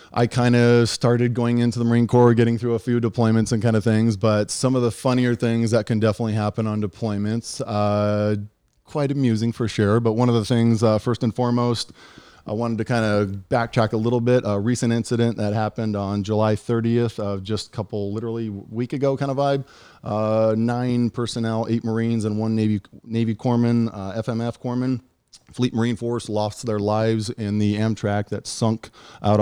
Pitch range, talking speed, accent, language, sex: 105-120 Hz, 200 wpm, American, English, male